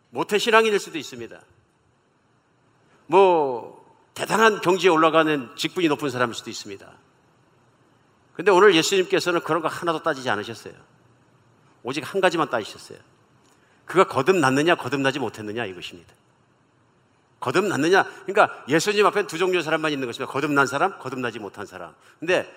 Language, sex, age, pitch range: Korean, male, 50-69, 125-175 Hz